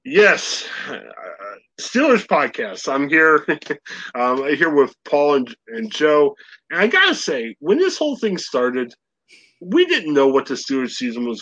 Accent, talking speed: American, 170 wpm